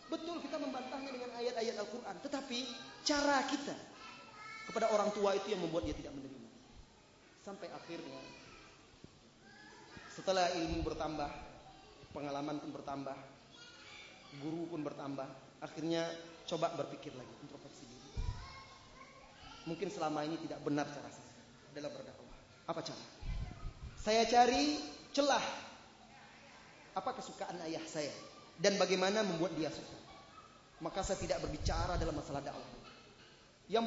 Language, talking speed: Indonesian, 115 wpm